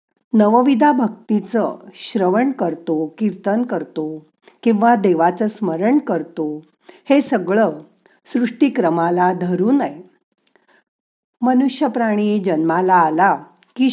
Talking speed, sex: 80 wpm, female